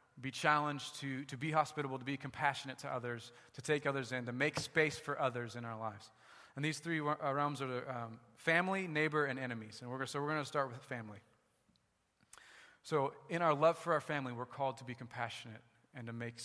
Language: English